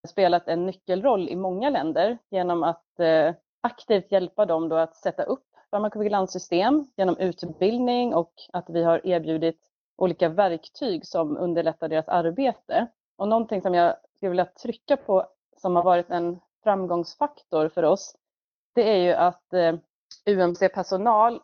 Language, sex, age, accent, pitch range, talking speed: Swedish, female, 30-49, native, 170-220 Hz, 135 wpm